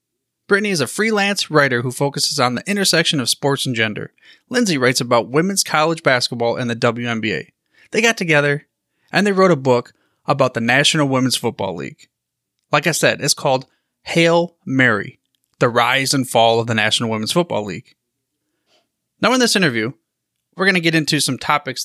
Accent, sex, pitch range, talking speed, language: American, male, 130-175 Hz, 180 wpm, English